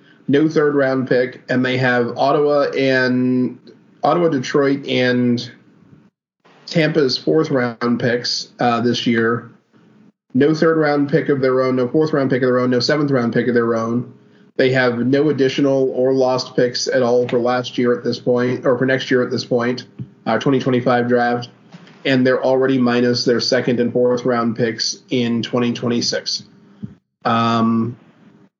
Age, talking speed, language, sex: 30-49, 165 wpm, English, male